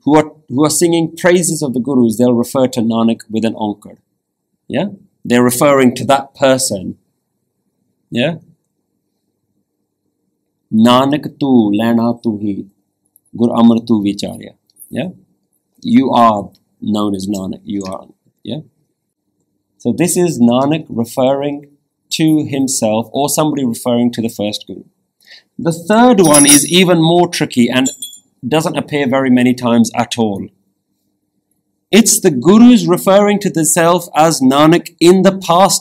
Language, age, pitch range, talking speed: English, 40-59, 115-155 Hz, 130 wpm